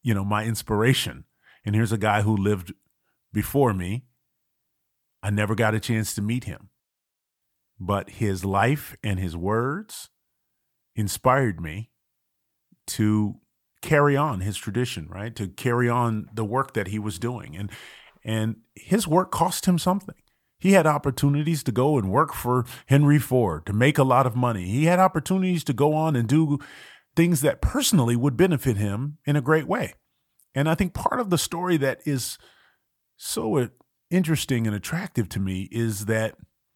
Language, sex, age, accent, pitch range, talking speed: English, male, 30-49, American, 105-145 Hz, 165 wpm